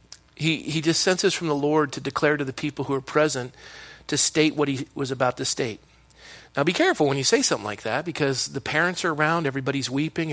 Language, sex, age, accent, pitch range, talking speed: English, male, 40-59, American, 135-170 Hz, 225 wpm